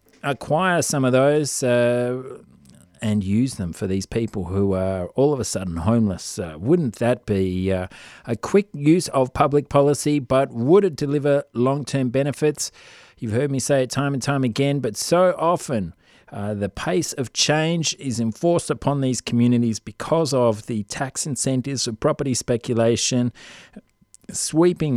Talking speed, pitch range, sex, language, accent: 160 wpm, 105-135 Hz, male, English, Australian